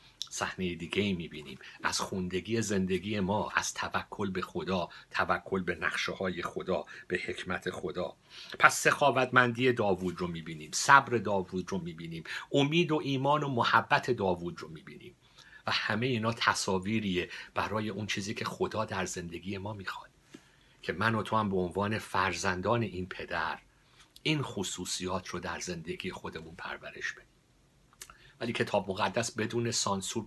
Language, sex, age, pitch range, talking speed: Persian, male, 50-69, 95-115 Hz, 140 wpm